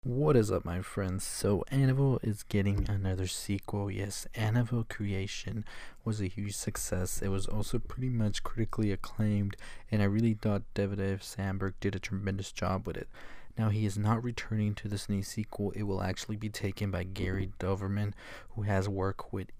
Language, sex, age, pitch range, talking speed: English, male, 20-39, 95-110 Hz, 180 wpm